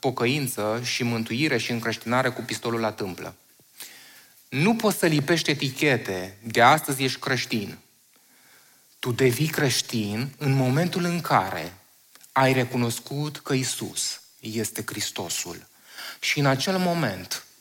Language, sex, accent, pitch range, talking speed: Romanian, male, native, 115-165 Hz, 120 wpm